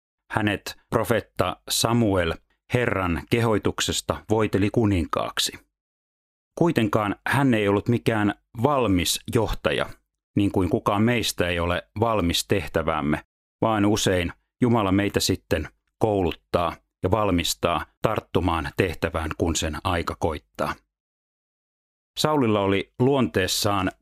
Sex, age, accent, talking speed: male, 30-49, native, 95 wpm